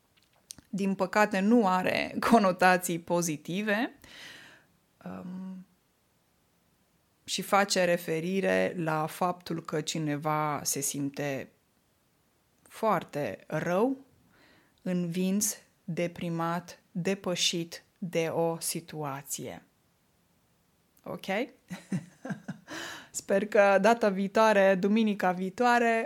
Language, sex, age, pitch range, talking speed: Romanian, female, 20-39, 170-215 Hz, 70 wpm